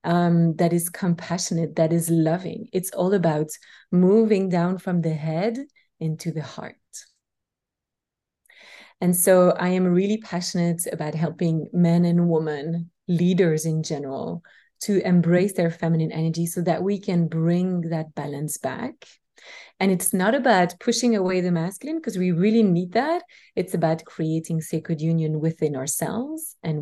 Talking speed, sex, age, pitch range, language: 150 wpm, female, 30-49, 165-205 Hz, English